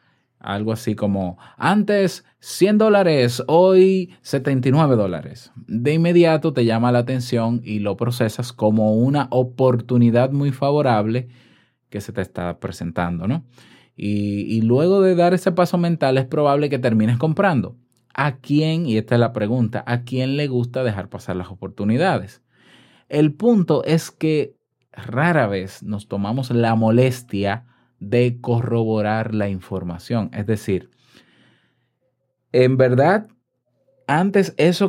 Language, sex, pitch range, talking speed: Spanish, male, 110-150 Hz, 130 wpm